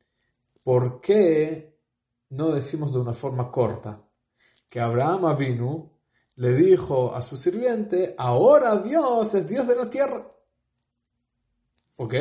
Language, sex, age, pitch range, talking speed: English, male, 40-59, 120-155 Hz, 120 wpm